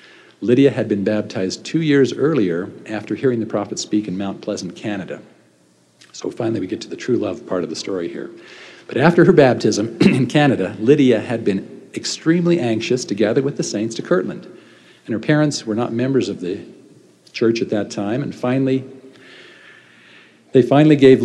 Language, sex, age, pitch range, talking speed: English, male, 50-69, 100-135 Hz, 180 wpm